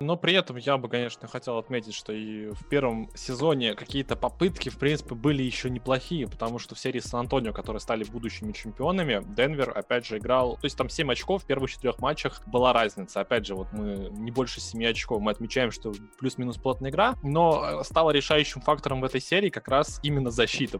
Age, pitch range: 20-39, 115-145 Hz